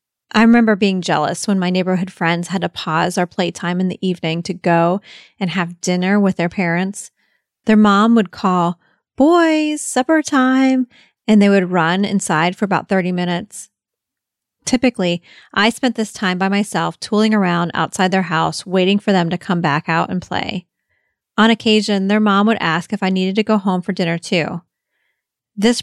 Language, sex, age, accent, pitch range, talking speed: English, female, 30-49, American, 180-220 Hz, 180 wpm